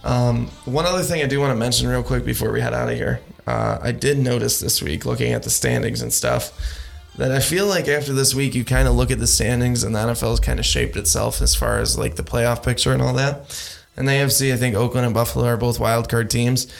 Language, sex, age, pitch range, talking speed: English, male, 20-39, 115-125 Hz, 260 wpm